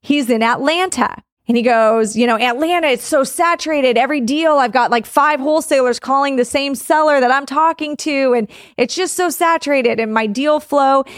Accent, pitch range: American, 230-295 Hz